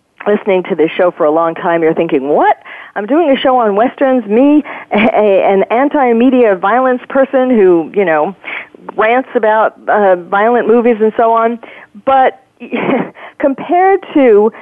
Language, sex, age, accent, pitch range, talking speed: English, female, 40-59, American, 185-245 Hz, 150 wpm